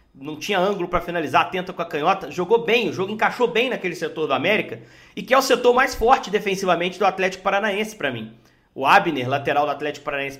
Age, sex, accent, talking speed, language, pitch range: 40-59, male, Brazilian, 220 wpm, Portuguese, 170-220 Hz